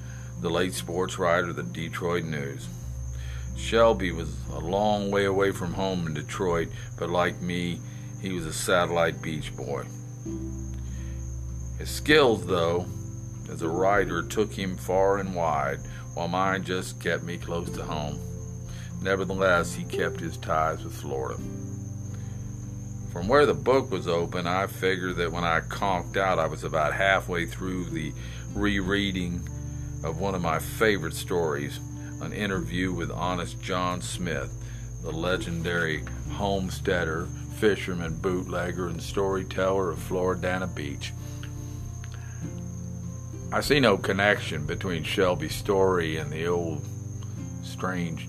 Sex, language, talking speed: male, English, 130 wpm